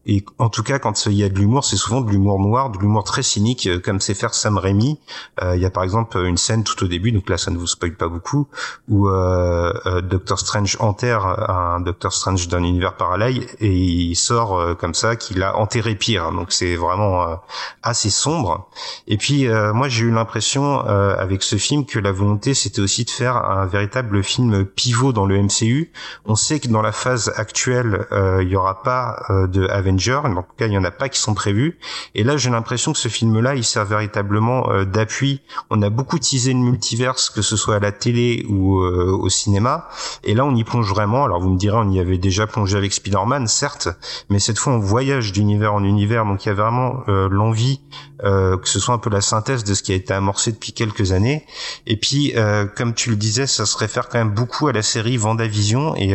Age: 30-49